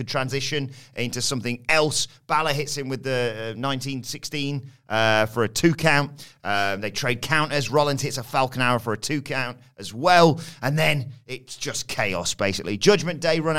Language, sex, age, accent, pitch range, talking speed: English, male, 30-49, British, 115-150 Hz, 170 wpm